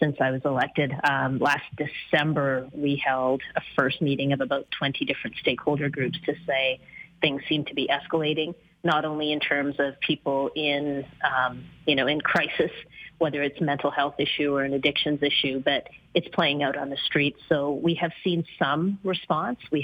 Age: 30-49